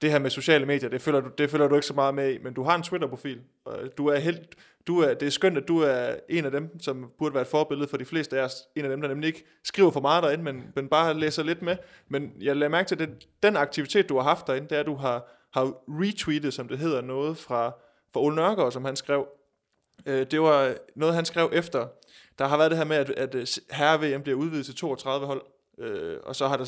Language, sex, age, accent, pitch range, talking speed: Danish, male, 20-39, native, 135-160 Hz, 250 wpm